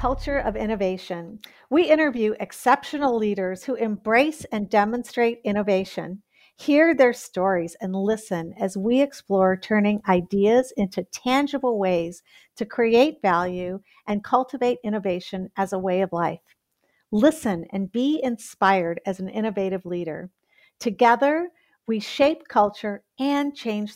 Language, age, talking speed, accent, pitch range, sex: English, 50-69, 125 wpm, American, 185-245 Hz, female